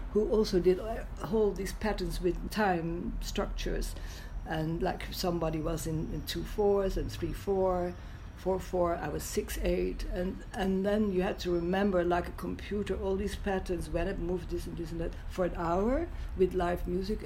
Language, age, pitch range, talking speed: English, 60-79, 175-210 Hz, 190 wpm